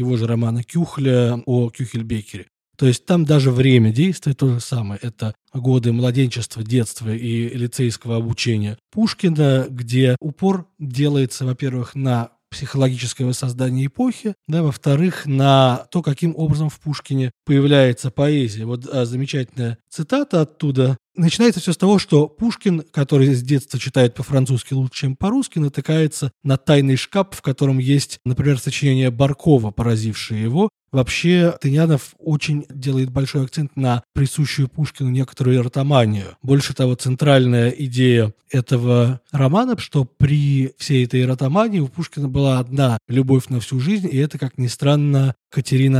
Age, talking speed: 20-39, 140 wpm